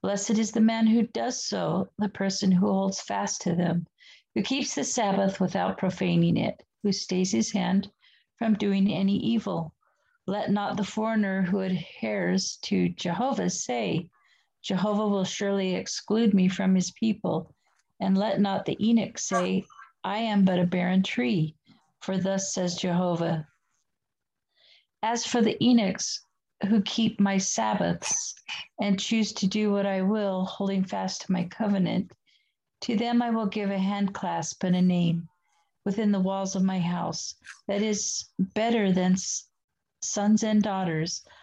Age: 50-69